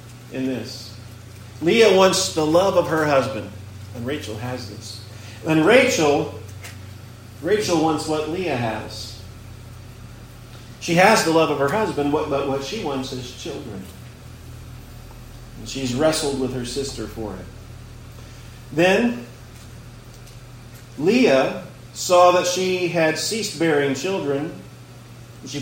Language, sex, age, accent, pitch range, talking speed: English, male, 40-59, American, 120-160 Hz, 120 wpm